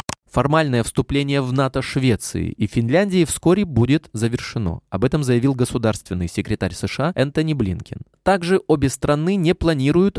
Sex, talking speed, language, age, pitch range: male, 135 wpm, Russian, 20-39, 110-160 Hz